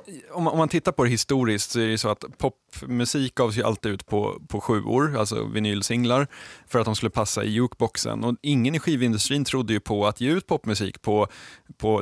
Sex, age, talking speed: male, 20-39, 210 wpm